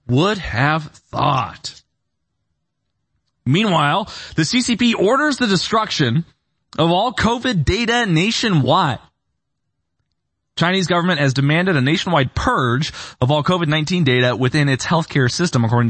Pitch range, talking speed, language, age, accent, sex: 110-160 Hz, 115 wpm, English, 20-39, American, male